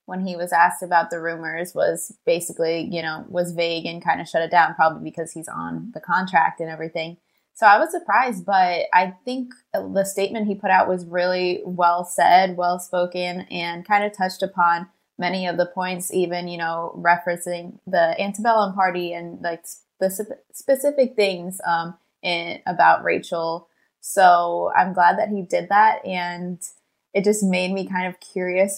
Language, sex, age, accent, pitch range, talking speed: English, female, 20-39, American, 170-190 Hz, 175 wpm